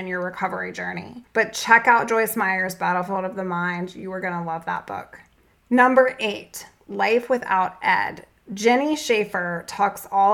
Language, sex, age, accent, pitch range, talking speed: English, female, 20-39, American, 190-235 Hz, 165 wpm